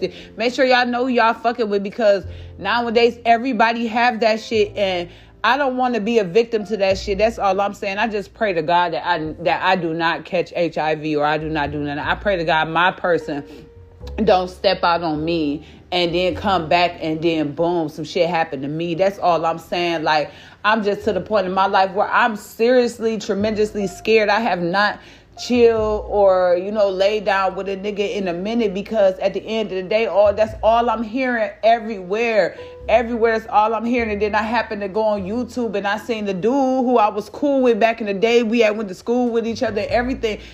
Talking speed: 225 wpm